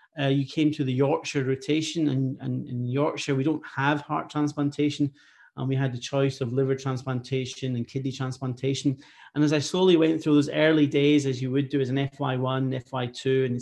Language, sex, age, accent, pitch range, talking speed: English, male, 30-49, British, 135-150 Hz, 200 wpm